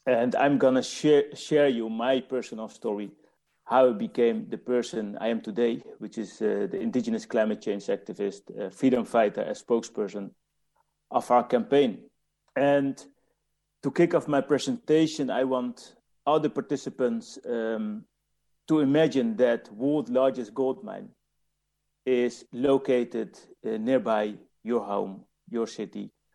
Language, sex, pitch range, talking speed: English, male, 115-145 Hz, 135 wpm